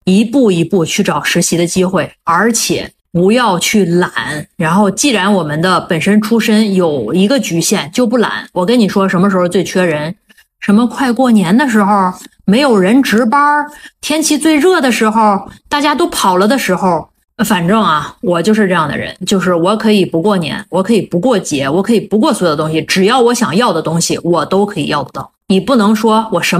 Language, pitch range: Chinese, 180-235 Hz